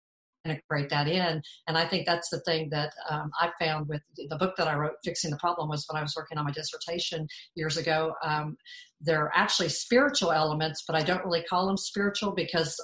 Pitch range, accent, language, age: 150-175 Hz, American, English, 50-69